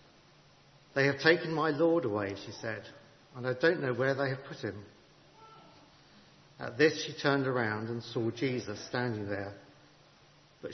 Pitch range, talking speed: 115-145 Hz, 155 wpm